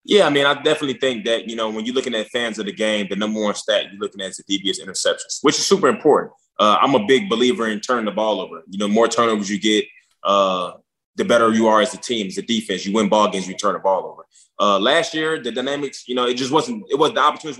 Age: 20-39